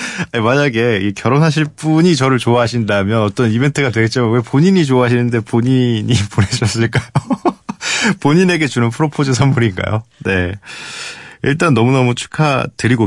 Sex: male